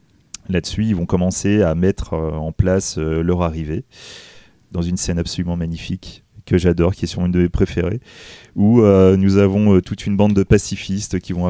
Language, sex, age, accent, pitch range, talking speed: French, male, 30-49, French, 90-105 Hz, 185 wpm